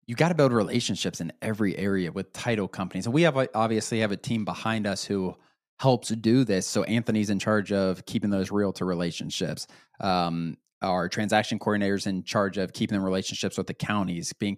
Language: English